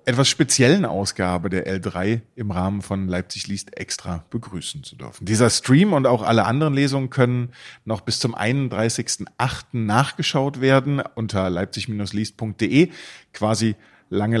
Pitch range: 115-145 Hz